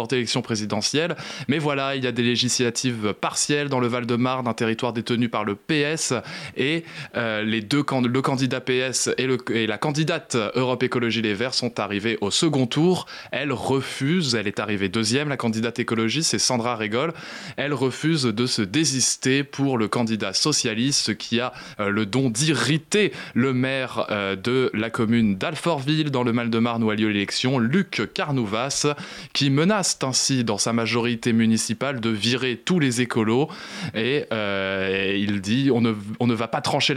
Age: 20-39